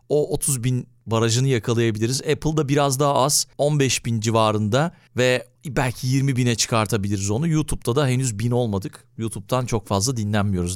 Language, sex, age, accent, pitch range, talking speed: Turkish, male, 40-59, native, 115-145 Hz, 150 wpm